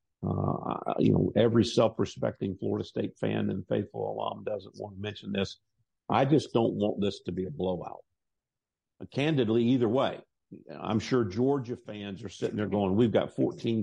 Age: 50-69